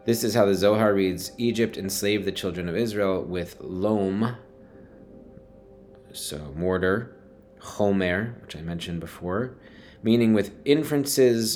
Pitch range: 85-110 Hz